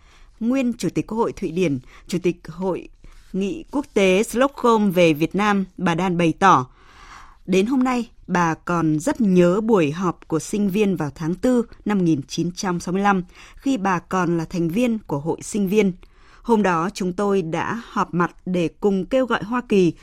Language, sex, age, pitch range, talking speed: Vietnamese, female, 20-39, 175-215 Hz, 185 wpm